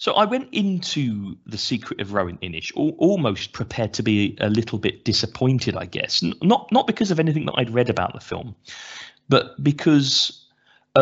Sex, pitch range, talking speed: male, 100-130 Hz, 185 wpm